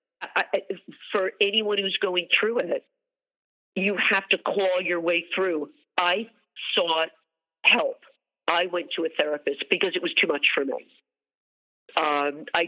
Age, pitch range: 50-69, 165-255 Hz